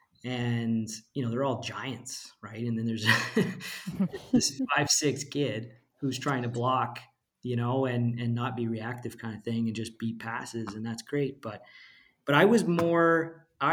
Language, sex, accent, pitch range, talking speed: English, male, American, 115-130 Hz, 175 wpm